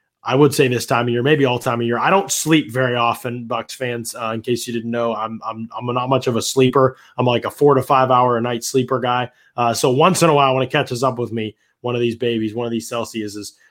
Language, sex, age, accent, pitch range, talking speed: English, male, 20-39, American, 115-140 Hz, 280 wpm